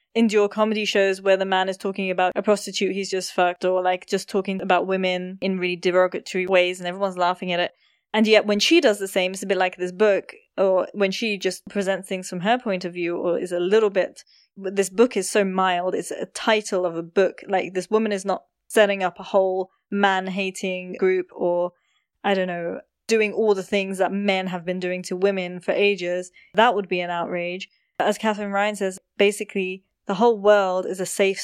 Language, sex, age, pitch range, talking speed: English, female, 20-39, 185-225 Hz, 220 wpm